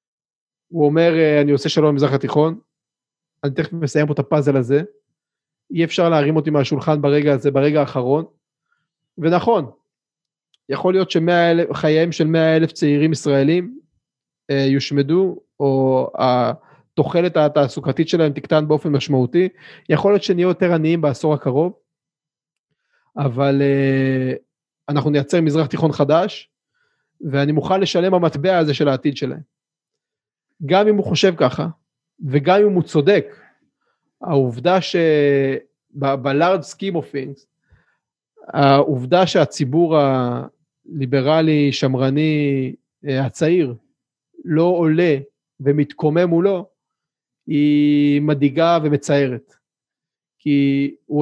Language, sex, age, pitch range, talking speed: Hebrew, male, 30-49, 140-170 Hz, 105 wpm